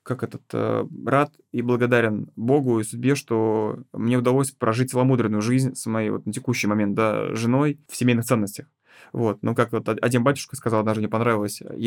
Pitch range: 110-130 Hz